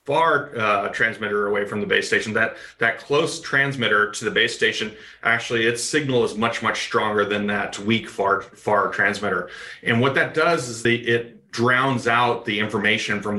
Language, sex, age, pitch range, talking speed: English, male, 40-59, 110-125 Hz, 185 wpm